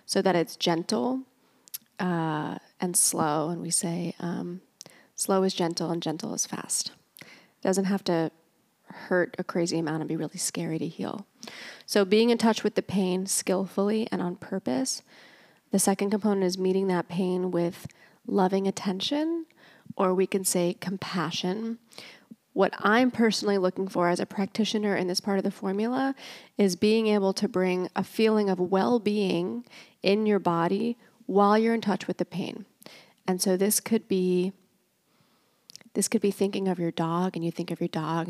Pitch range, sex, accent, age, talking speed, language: 175-205 Hz, female, American, 30-49, 170 wpm, English